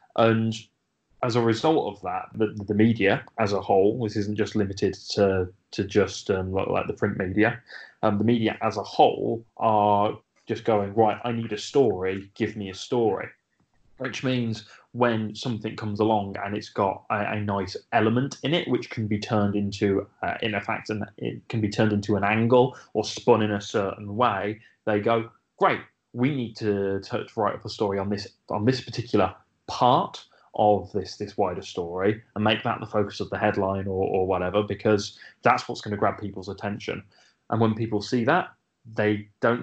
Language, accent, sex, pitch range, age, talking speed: English, British, male, 100-115 Hz, 20-39, 195 wpm